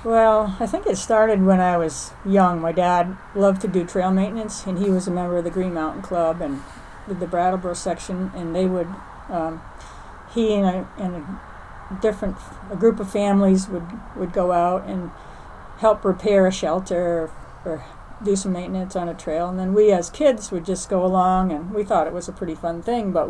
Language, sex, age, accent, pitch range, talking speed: English, female, 50-69, American, 175-205 Hz, 210 wpm